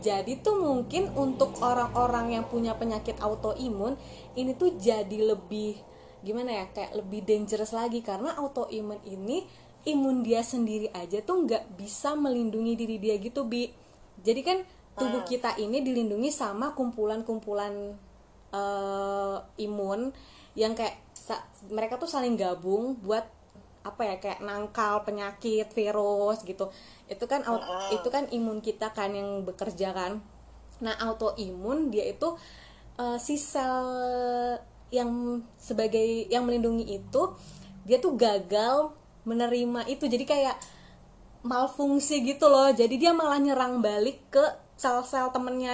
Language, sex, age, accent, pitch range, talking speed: Indonesian, female, 20-39, native, 210-255 Hz, 130 wpm